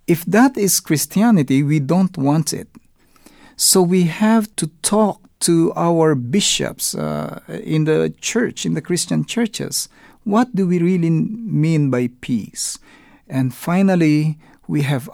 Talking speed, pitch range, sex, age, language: 140 wpm, 140-205 Hz, male, 50-69, English